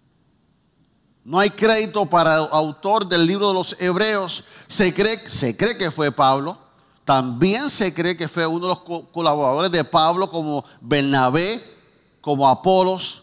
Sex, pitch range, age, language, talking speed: male, 165-230 Hz, 50-69, Spanish, 150 wpm